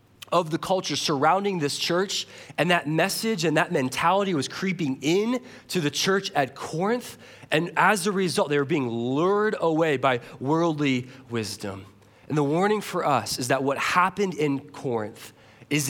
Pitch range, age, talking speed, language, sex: 120-155 Hz, 20-39, 165 wpm, English, male